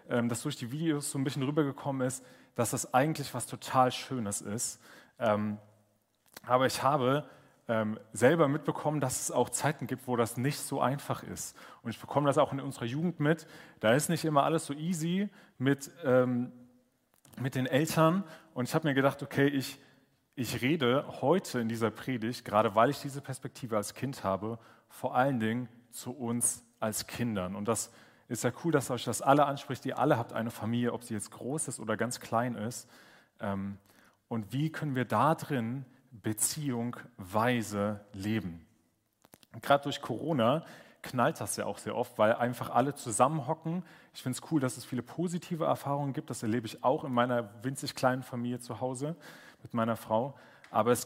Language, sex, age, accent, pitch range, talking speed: German, male, 30-49, German, 115-140 Hz, 175 wpm